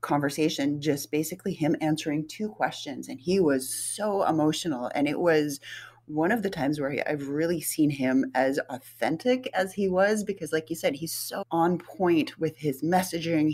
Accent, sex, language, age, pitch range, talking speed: American, female, English, 30-49, 140-175 Hz, 175 wpm